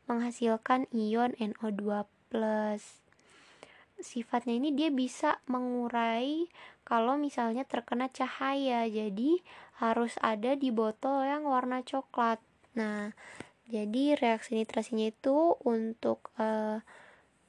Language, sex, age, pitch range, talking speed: Indonesian, female, 20-39, 215-260 Hz, 95 wpm